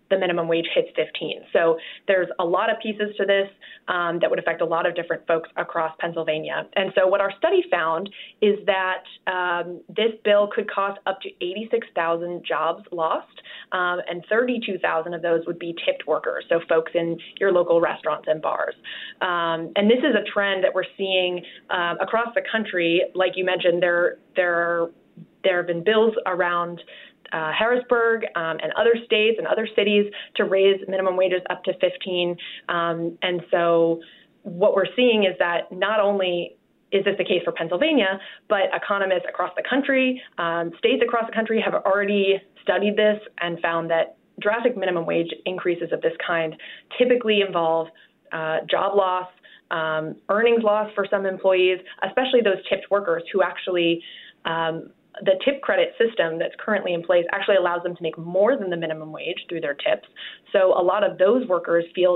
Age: 20-39